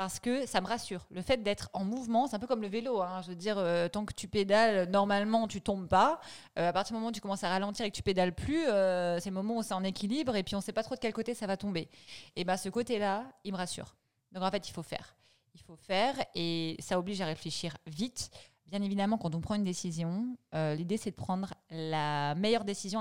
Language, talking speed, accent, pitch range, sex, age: French, 270 wpm, French, 175-215 Hz, female, 20-39